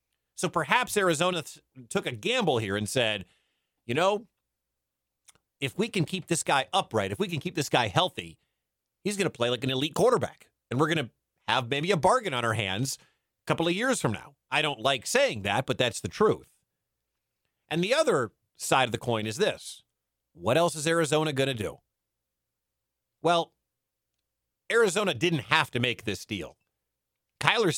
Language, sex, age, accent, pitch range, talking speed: English, male, 40-59, American, 115-170 Hz, 180 wpm